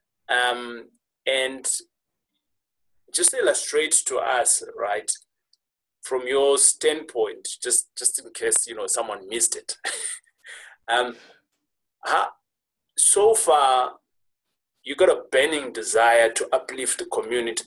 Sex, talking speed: male, 105 wpm